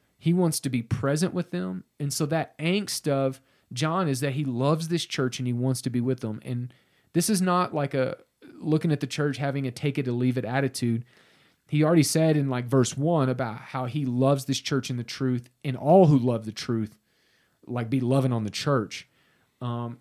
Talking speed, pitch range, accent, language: 220 wpm, 125-150 Hz, American, English